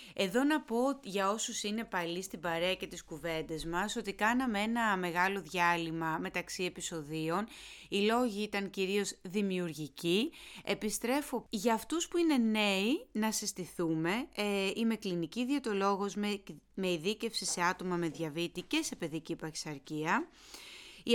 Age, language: 30-49, Greek